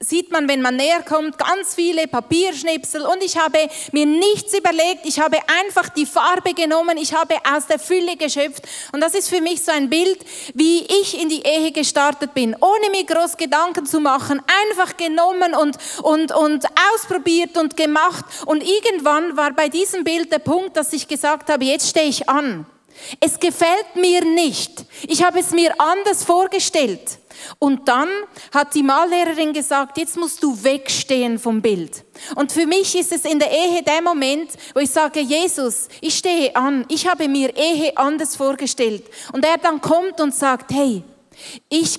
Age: 30-49